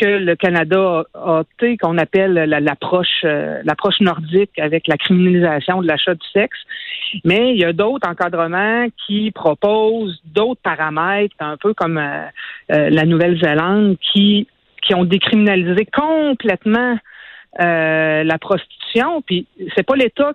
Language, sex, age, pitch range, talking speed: French, female, 50-69, 170-225 Hz, 130 wpm